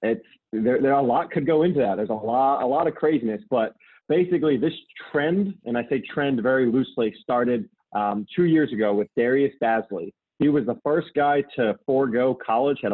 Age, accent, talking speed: 30-49, American, 205 wpm